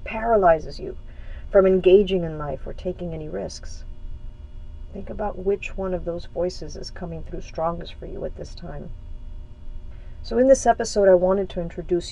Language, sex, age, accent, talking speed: English, female, 50-69, American, 170 wpm